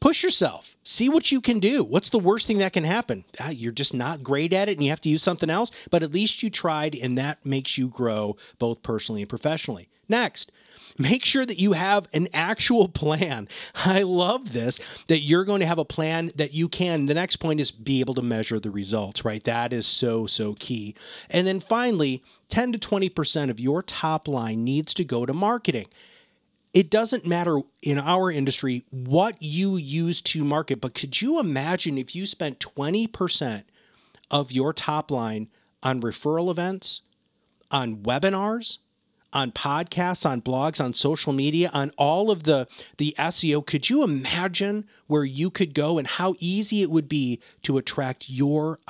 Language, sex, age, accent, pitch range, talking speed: English, male, 30-49, American, 130-185 Hz, 185 wpm